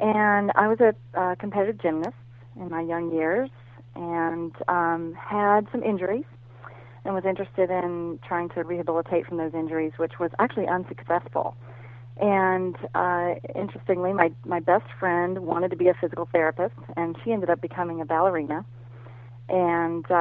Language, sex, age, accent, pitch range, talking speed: English, female, 40-59, American, 155-180 Hz, 150 wpm